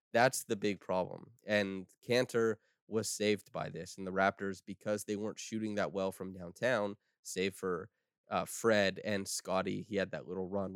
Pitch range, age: 95-110 Hz, 20-39